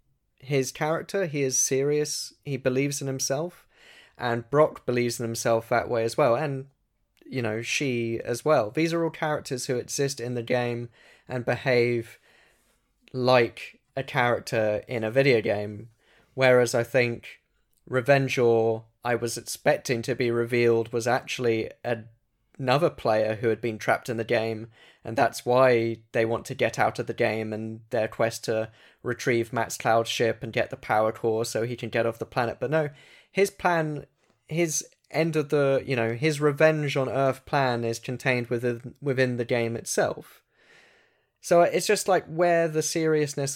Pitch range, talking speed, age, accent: 115-140 Hz, 170 wpm, 10-29, British